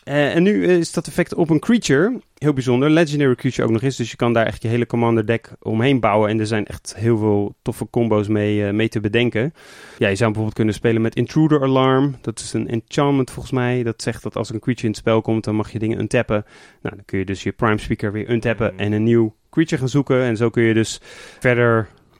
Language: Dutch